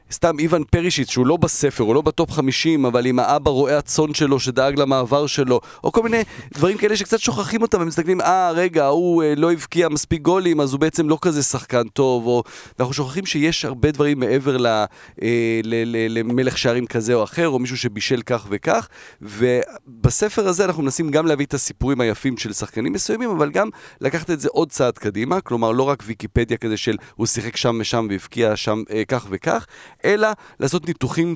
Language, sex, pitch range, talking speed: Hebrew, male, 115-155 Hz, 180 wpm